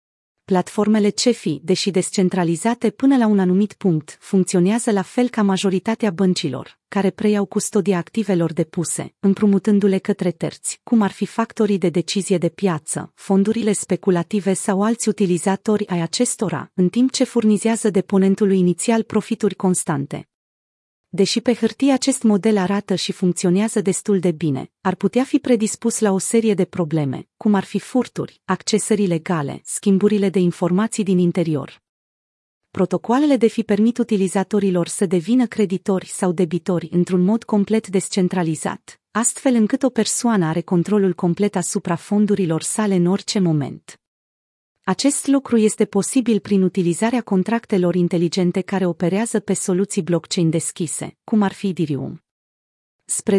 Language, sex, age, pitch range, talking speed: Romanian, female, 30-49, 180-220 Hz, 140 wpm